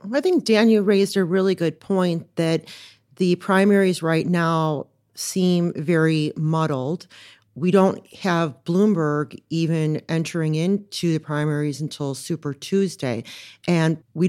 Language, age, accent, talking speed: English, 40-59, American, 125 wpm